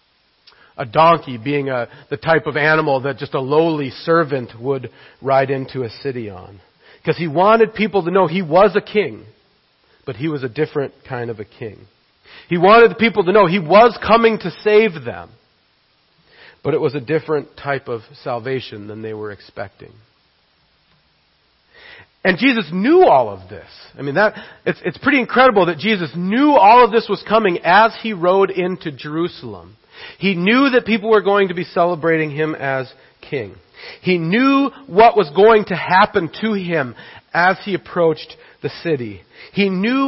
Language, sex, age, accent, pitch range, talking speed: English, male, 40-59, American, 140-200 Hz, 175 wpm